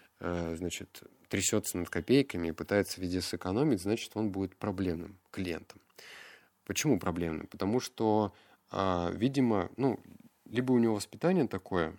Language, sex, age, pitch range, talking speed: Russian, male, 20-39, 90-105 Hz, 120 wpm